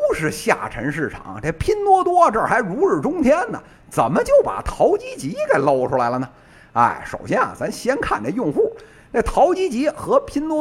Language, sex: Chinese, male